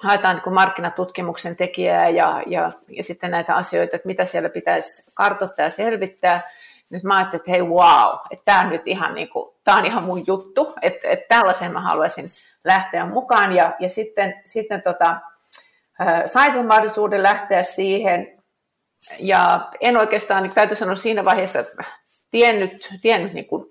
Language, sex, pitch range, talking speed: Finnish, female, 180-225 Hz, 155 wpm